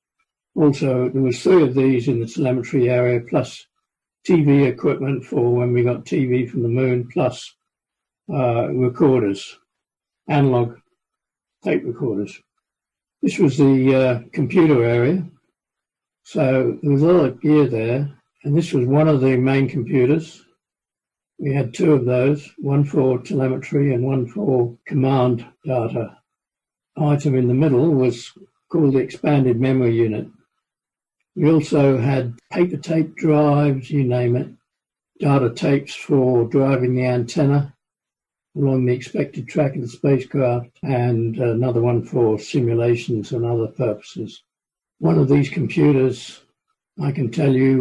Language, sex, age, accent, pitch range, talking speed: English, male, 60-79, British, 125-150 Hz, 140 wpm